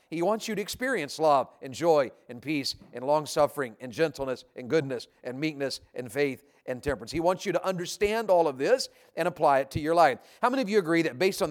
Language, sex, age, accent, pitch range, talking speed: English, male, 50-69, American, 150-190 Hz, 235 wpm